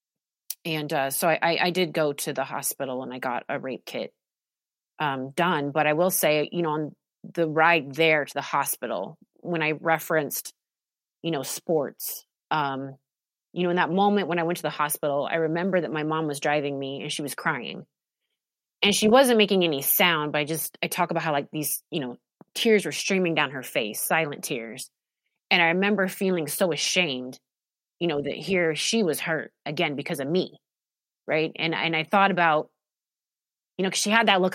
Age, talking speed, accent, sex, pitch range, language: 30-49, 200 wpm, American, female, 155-210 Hz, English